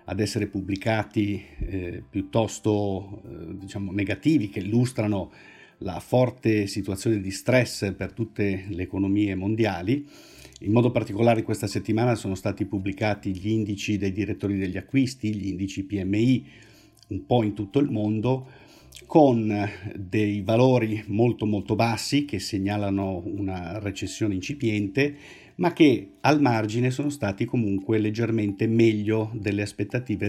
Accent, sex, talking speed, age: native, male, 125 wpm, 50-69